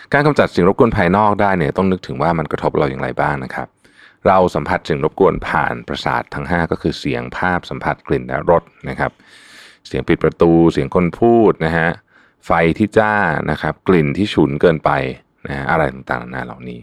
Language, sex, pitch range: Thai, male, 70-95 Hz